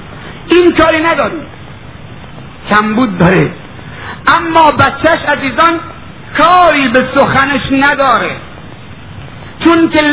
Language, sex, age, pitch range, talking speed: Persian, male, 50-69, 205-285 Hz, 85 wpm